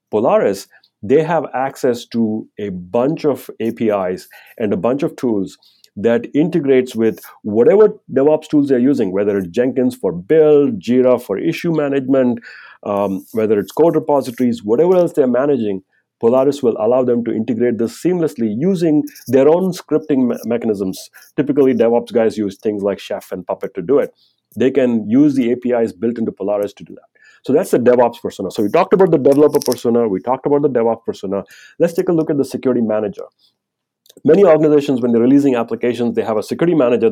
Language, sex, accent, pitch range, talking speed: English, male, Indian, 110-150 Hz, 185 wpm